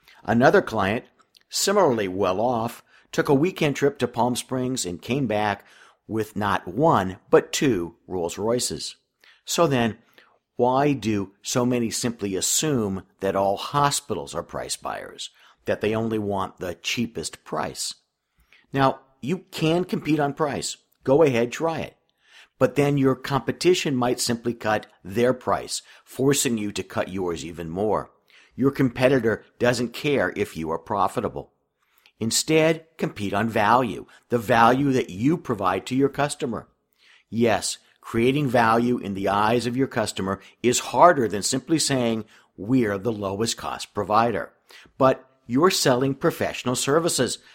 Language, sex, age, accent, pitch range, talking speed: English, male, 50-69, American, 105-135 Hz, 140 wpm